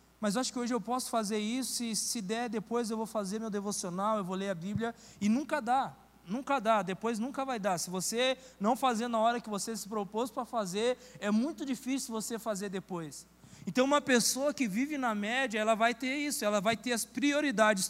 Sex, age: male, 20-39